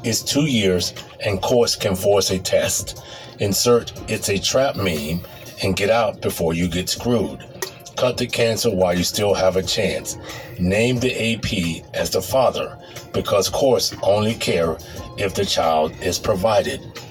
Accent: American